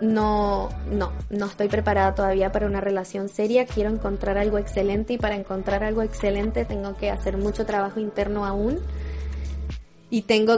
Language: Spanish